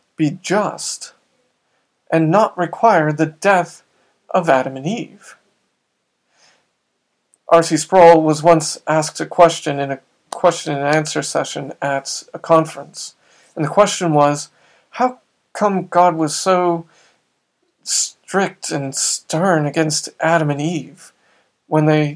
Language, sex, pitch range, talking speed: English, male, 150-175 Hz, 120 wpm